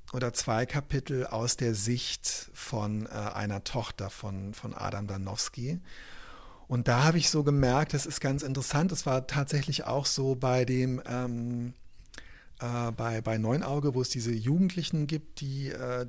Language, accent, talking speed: German, German, 160 wpm